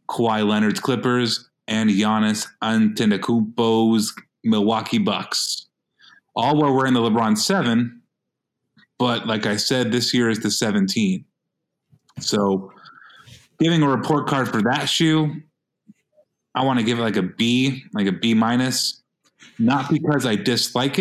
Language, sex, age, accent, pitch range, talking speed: English, male, 30-49, American, 110-140 Hz, 135 wpm